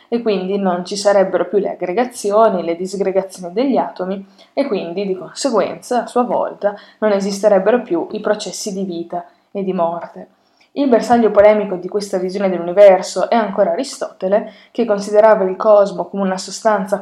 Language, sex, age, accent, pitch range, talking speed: Italian, female, 20-39, native, 185-220 Hz, 160 wpm